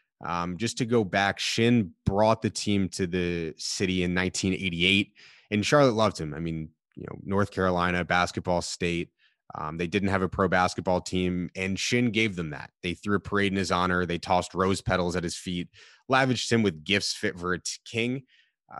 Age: 20-39